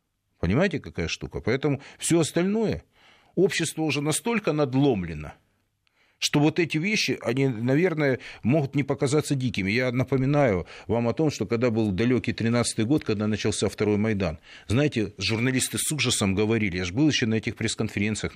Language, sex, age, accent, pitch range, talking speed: Russian, male, 40-59, native, 105-130 Hz, 155 wpm